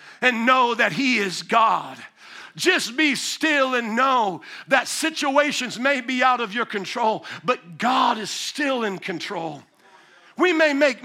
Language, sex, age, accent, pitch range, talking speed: English, male, 50-69, American, 245-315 Hz, 150 wpm